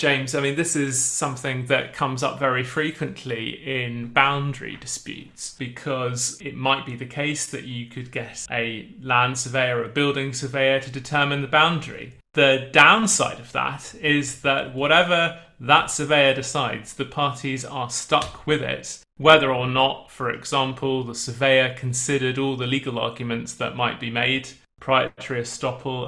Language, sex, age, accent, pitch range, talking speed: English, male, 30-49, British, 125-145 Hz, 160 wpm